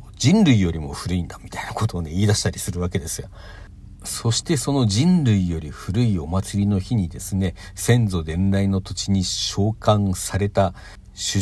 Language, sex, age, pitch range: Japanese, male, 50-69, 95-115 Hz